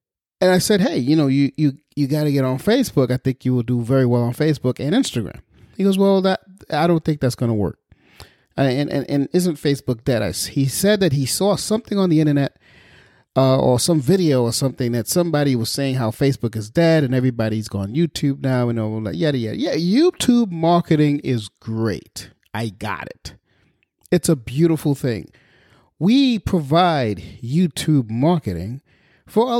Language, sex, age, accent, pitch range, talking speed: English, male, 30-49, American, 120-180 Hz, 190 wpm